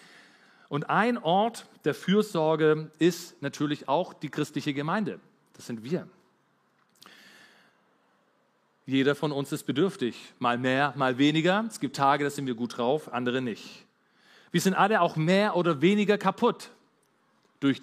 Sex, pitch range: male, 130-190 Hz